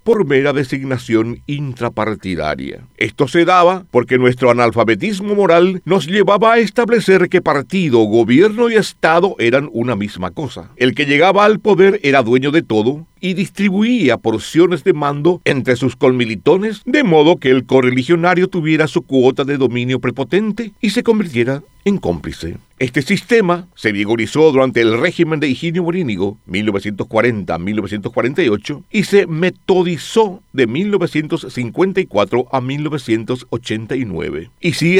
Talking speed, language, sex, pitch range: 130 wpm, Spanish, male, 120-185 Hz